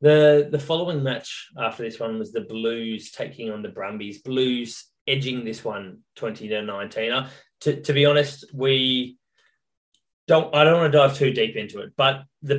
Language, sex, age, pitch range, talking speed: English, male, 20-39, 115-145 Hz, 185 wpm